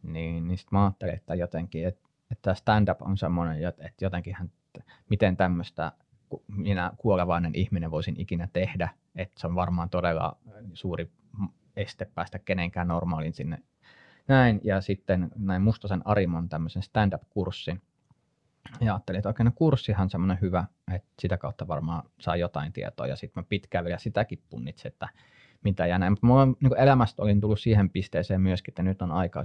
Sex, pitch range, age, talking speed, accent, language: male, 85-105 Hz, 20-39, 160 wpm, native, Finnish